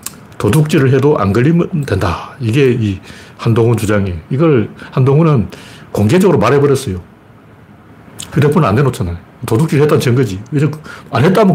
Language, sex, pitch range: Korean, male, 110-155 Hz